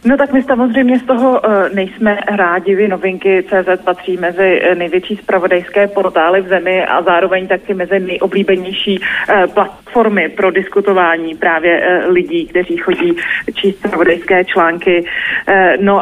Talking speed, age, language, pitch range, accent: 125 wpm, 30-49, Czech, 185-205 Hz, native